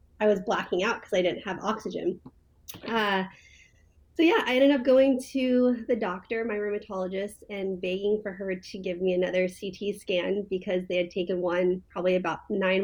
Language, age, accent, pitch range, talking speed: English, 30-49, American, 185-215 Hz, 180 wpm